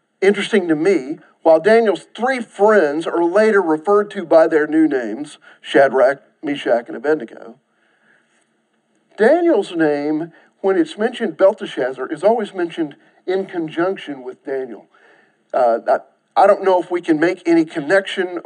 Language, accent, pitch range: English, American, 155-235 Hz